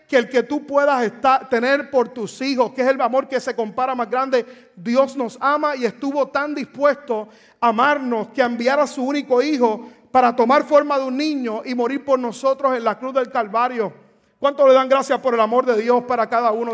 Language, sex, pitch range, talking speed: Spanish, male, 245-290 Hz, 215 wpm